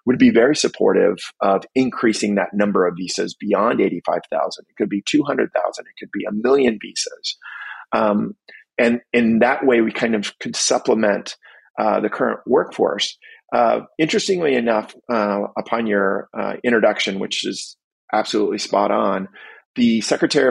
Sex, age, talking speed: male, 40-59, 150 wpm